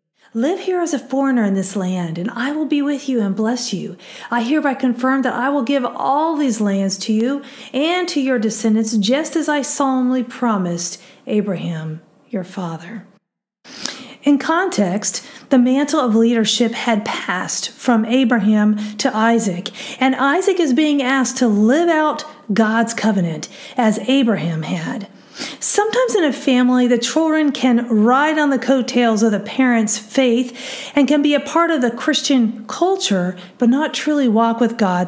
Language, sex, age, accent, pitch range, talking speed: English, female, 40-59, American, 220-285 Hz, 165 wpm